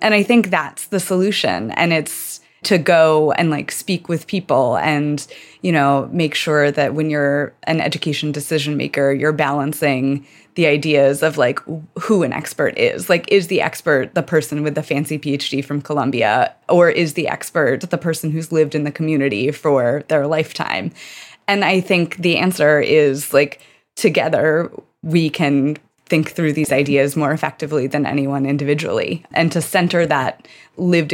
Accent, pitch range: American, 145-165 Hz